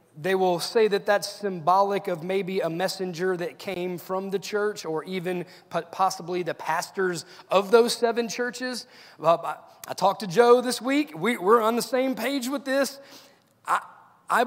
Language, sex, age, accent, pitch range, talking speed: English, male, 30-49, American, 185-235 Hz, 160 wpm